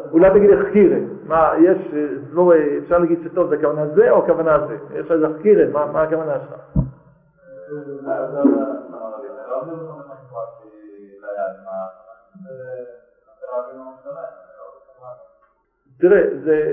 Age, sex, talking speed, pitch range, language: 50-69, male, 85 wpm, 145-225 Hz, Hebrew